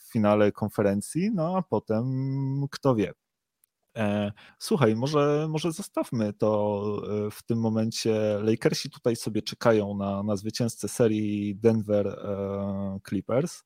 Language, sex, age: Polish, male, 30-49